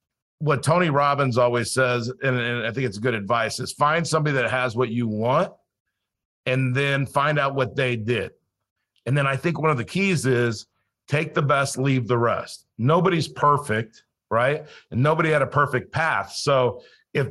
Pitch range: 120-150 Hz